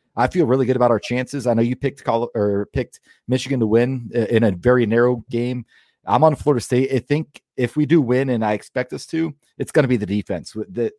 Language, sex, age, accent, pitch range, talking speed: English, male, 40-59, American, 110-130 Hz, 240 wpm